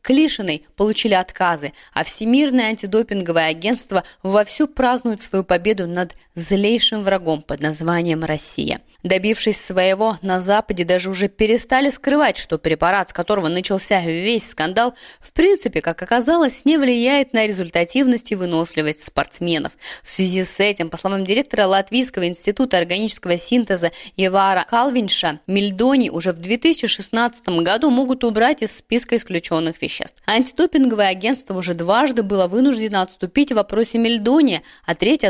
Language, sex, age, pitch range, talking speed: Russian, female, 20-39, 180-245 Hz, 135 wpm